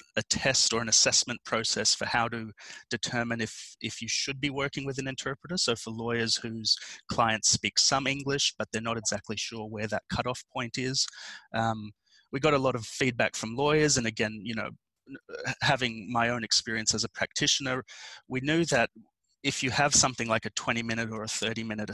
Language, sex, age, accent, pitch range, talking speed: English, male, 30-49, Australian, 110-125 Hz, 190 wpm